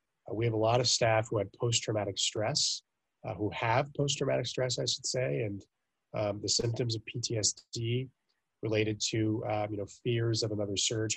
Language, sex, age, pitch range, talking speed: English, male, 20-39, 105-120 Hz, 175 wpm